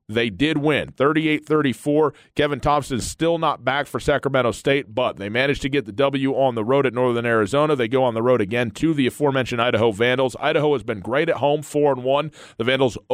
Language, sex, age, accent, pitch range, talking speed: English, male, 40-59, American, 125-155 Hz, 215 wpm